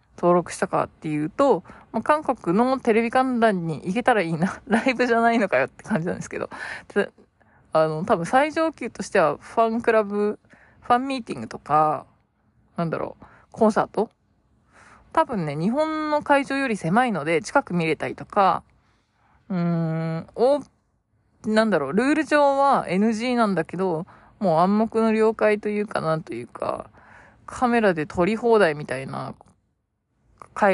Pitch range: 165-230 Hz